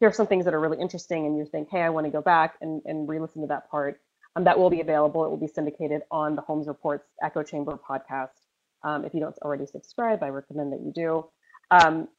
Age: 30-49